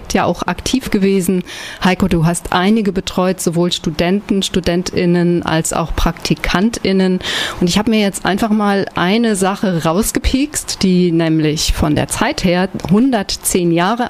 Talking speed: 140 wpm